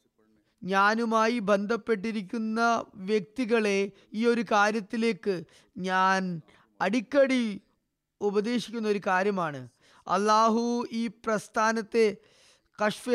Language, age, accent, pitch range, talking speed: Malayalam, 20-39, native, 185-230 Hz, 70 wpm